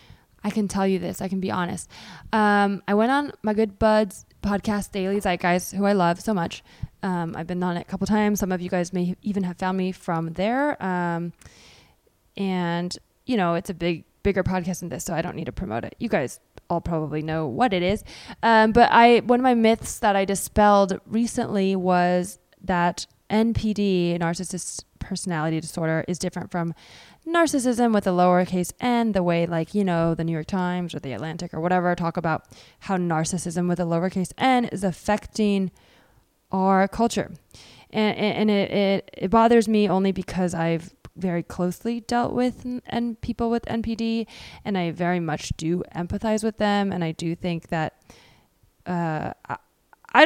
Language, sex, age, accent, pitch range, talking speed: English, female, 20-39, American, 175-215 Hz, 185 wpm